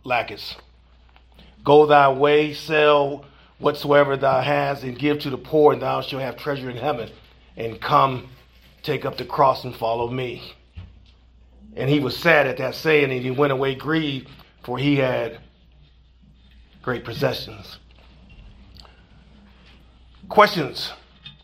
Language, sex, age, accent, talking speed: English, male, 40-59, American, 130 wpm